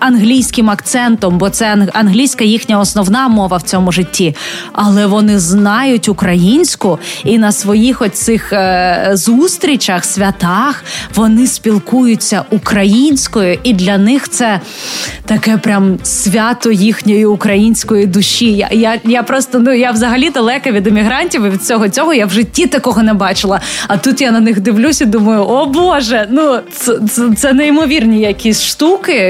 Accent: native